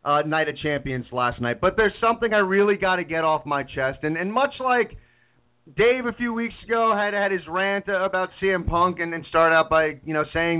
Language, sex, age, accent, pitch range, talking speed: English, male, 40-59, American, 150-210 Hz, 230 wpm